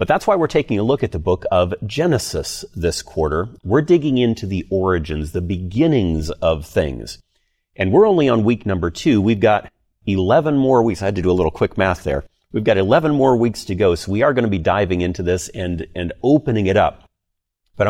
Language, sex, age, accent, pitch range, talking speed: English, male, 40-59, American, 85-110 Hz, 220 wpm